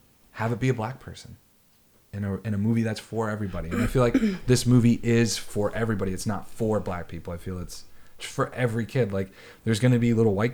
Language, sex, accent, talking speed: English, male, American, 235 wpm